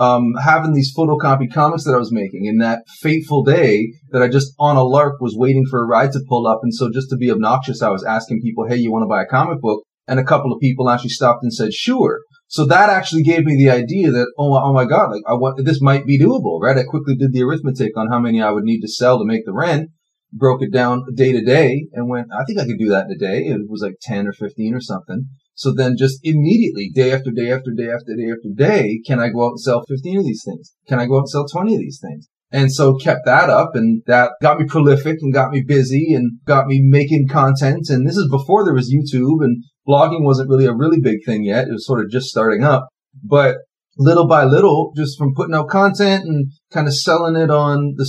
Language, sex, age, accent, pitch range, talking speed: English, male, 30-49, American, 120-150 Hz, 255 wpm